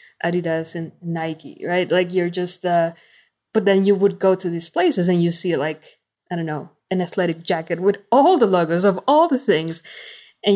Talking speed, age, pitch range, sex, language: 200 wpm, 20-39, 165-205 Hz, female, English